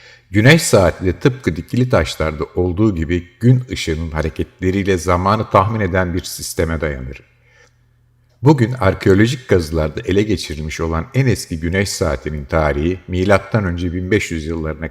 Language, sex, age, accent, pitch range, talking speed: Turkish, male, 60-79, native, 80-105 Hz, 125 wpm